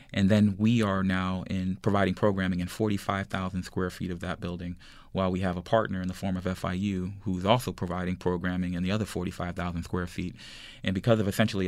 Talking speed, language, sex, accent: 200 wpm, English, male, American